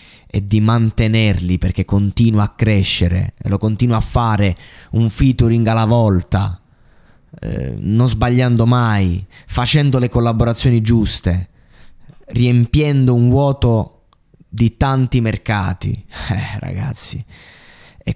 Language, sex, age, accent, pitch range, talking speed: Italian, male, 20-39, native, 95-115 Hz, 110 wpm